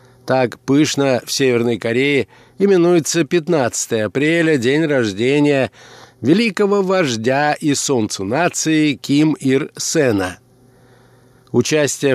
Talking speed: 95 wpm